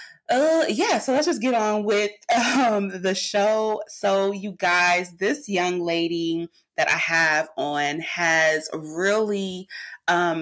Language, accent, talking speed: English, American, 140 wpm